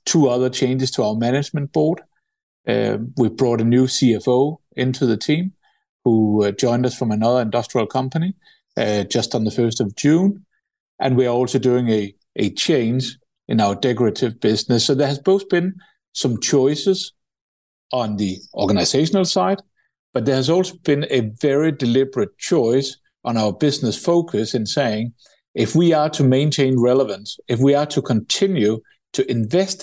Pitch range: 120-155 Hz